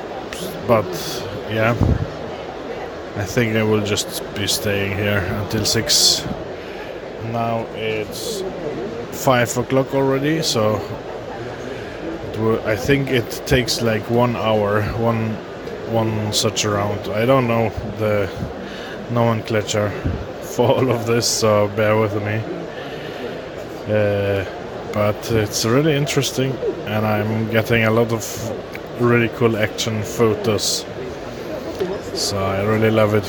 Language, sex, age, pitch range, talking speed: English, male, 20-39, 105-120 Hz, 115 wpm